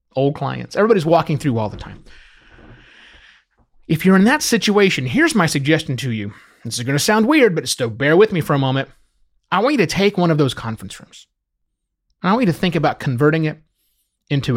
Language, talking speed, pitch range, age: English, 215 wpm, 130-195 Hz, 30-49